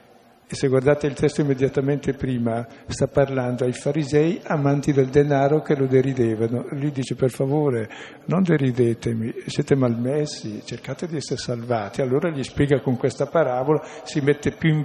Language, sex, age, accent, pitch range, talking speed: Italian, male, 50-69, native, 125-150 Hz, 160 wpm